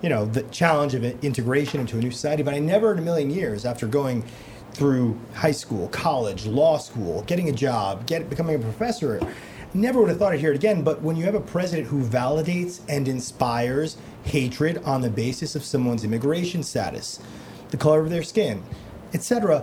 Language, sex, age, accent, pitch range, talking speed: English, male, 30-49, American, 130-170 Hz, 195 wpm